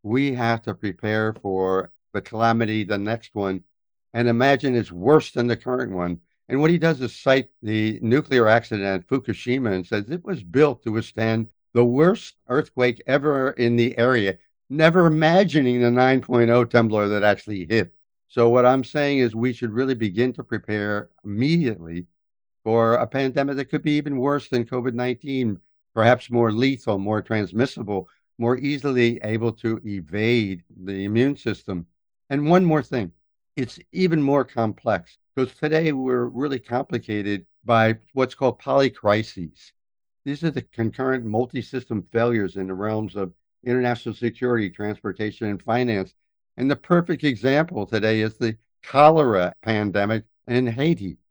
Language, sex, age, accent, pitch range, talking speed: English, male, 60-79, American, 105-130 Hz, 150 wpm